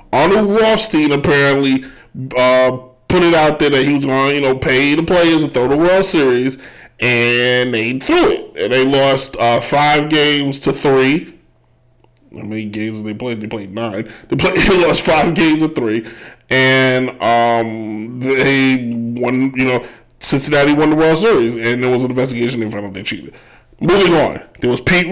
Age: 20-39